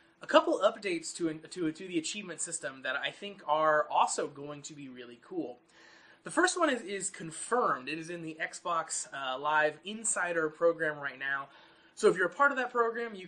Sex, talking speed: male, 205 wpm